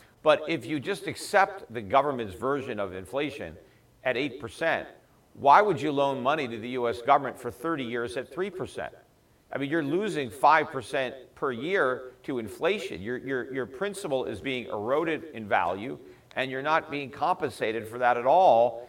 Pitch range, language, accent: 125-155 Hz, English, American